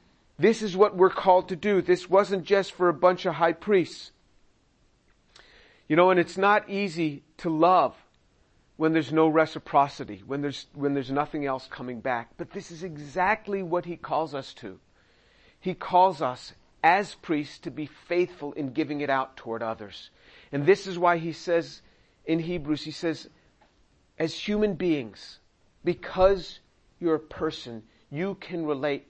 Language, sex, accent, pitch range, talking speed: English, male, American, 145-185 Hz, 165 wpm